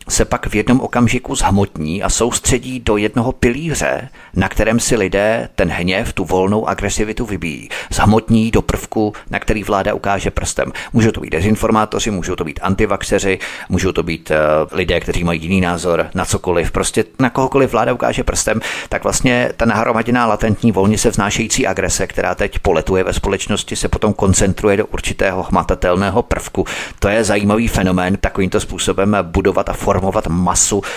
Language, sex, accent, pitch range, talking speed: Czech, male, native, 95-115 Hz, 160 wpm